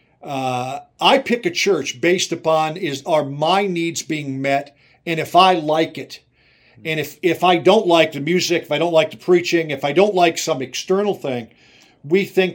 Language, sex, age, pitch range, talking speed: English, male, 50-69, 140-175 Hz, 195 wpm